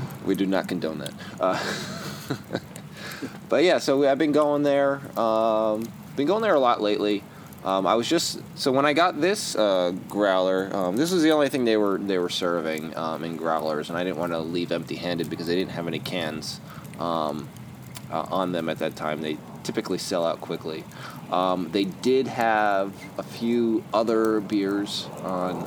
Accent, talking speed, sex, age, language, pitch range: American, 185 wpm, male, 20-39, English, 90-110 Hz